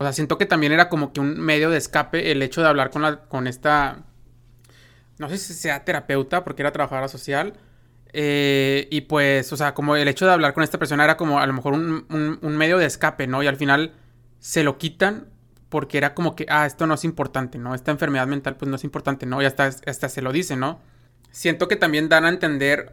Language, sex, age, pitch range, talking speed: Spanish, male, 20-39, 135-155 Hz, 240 wpm